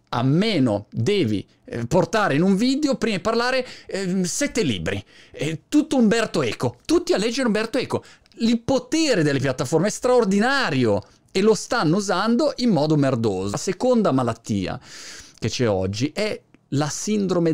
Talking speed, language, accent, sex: 145 wpm, Italian, native, male